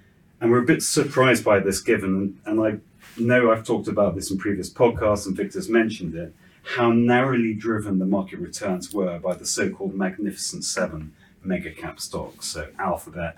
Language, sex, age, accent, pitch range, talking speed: English, male, 30-49, British, 95-120 Hz, 175 wpm